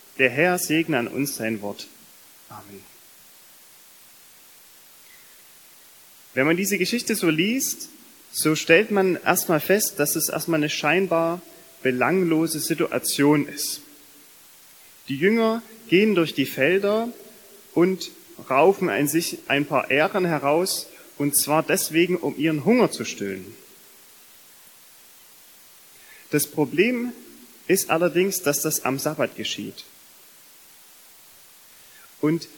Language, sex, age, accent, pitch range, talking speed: German, male, 30-49, German, 145-200 Hz, 110 wpm